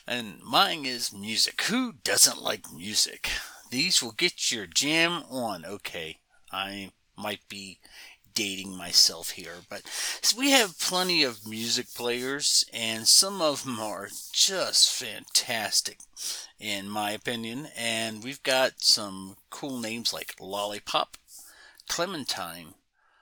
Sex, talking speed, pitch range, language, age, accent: male, 125 wpm, 105-145 Hz, English, 40-59, American